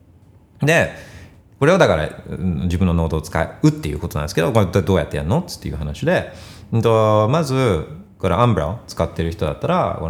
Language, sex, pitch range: Japanese, male, 85-110 Hz